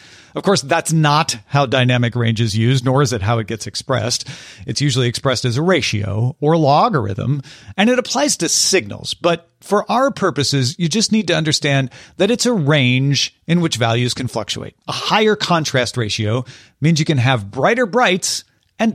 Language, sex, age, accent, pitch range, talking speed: English, male, 40-59, American, 125-195 Hz, 185 wpm